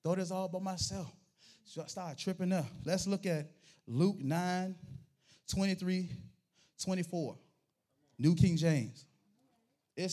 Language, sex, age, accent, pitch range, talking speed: English, male, 30-49, American, 170-270 Hz, 130 wpm